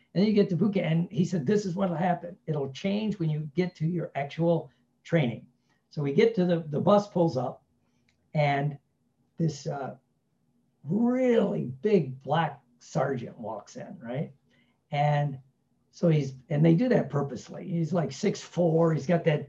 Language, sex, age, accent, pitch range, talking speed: English, male, 60-79, American, 155-200 Hz, 170 wpm